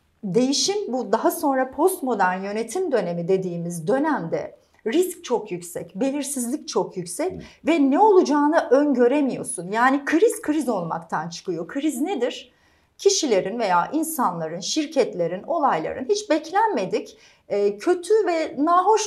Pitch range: 255-340 Hz